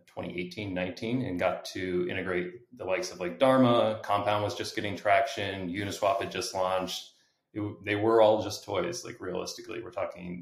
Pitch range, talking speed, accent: 90-110 Hz, 175 wpm, American